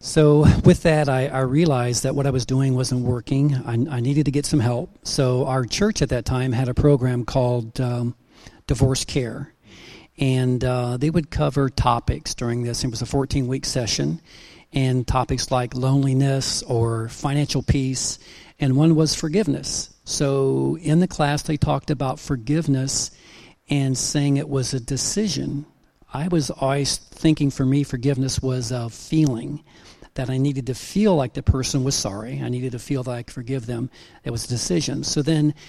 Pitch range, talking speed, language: 125-145 Hz, 180 wpm, English